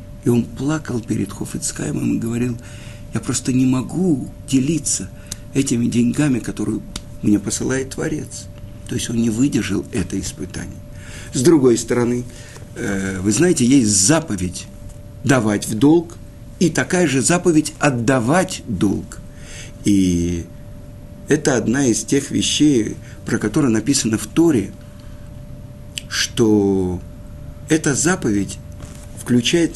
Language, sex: Russian, male